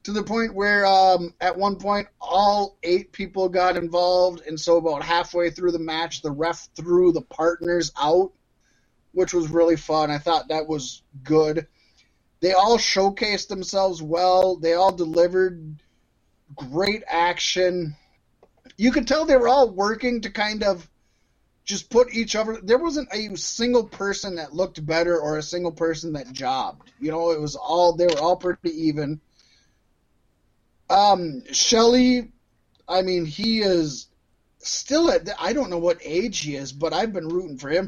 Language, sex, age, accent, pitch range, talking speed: English, male, 20-39, American, 160-200 Hz, 165 wpm